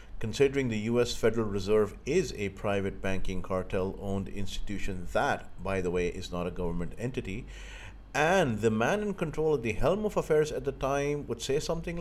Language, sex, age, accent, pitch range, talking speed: English, male, 50-69, Indian, 95-120 Hz, 180 wpm